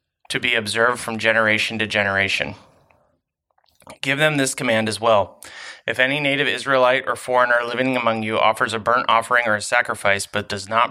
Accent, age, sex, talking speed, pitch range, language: American, 30-49, male, 175 wpm, 110-130 Hz, English